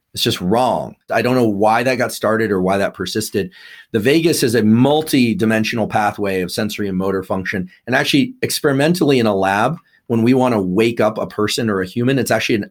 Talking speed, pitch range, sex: 210 wpm, 105-135 Hz, male